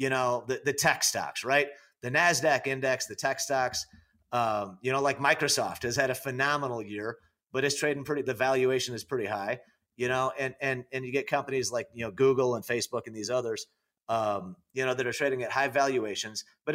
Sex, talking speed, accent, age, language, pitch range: male, 210 wpm, American, 30-49, English, 115-140 Hz